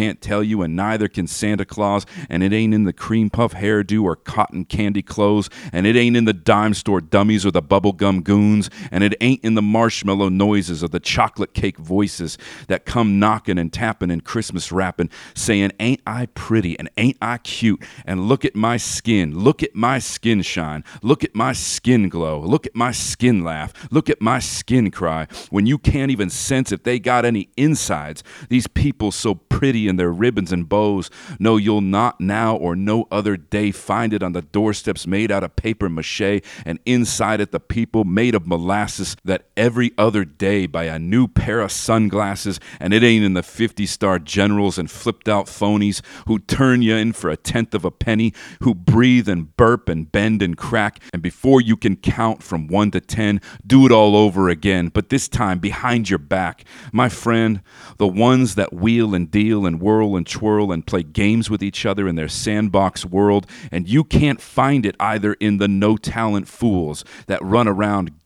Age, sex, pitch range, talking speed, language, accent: 40-59, male, 95-115 Hz, 200 wpm, English, American